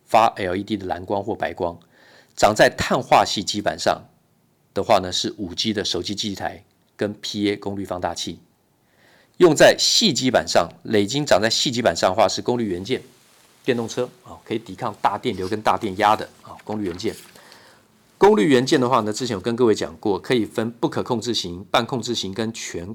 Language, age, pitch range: Chinese, 50-69, 95-115 Hz